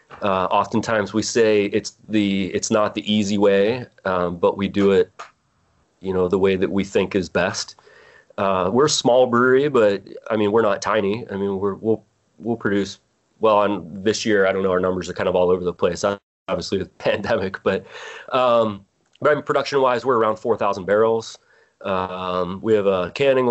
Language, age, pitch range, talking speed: English, 30-49, 95-115 Hz, 190 wpm